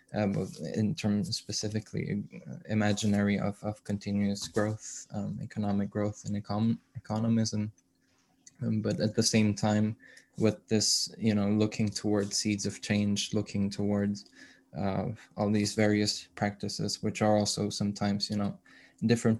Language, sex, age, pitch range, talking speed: English, male, 20-39, 105-110 Hz, 140 wpm